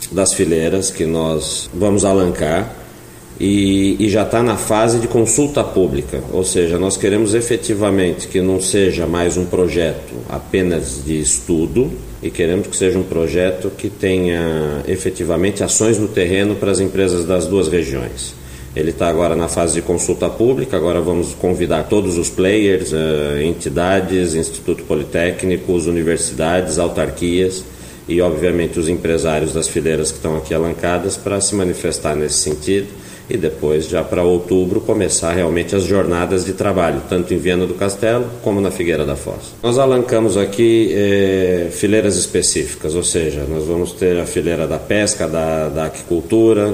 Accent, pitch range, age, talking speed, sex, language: Brazilian, 80-100 Hz, 50-69, 155 wpm, male, Portuguese